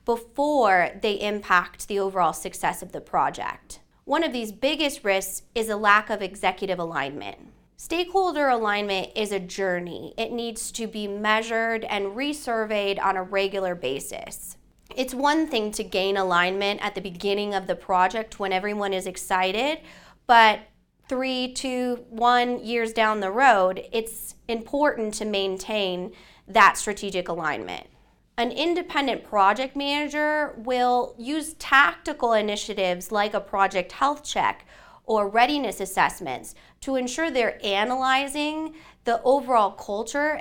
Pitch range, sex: 195-255 Hz, female